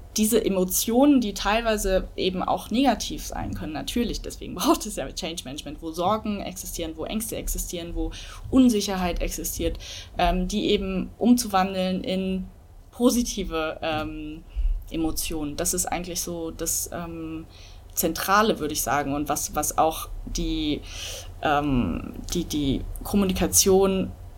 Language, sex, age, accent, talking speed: German, female, 20-39, German, 130 wpm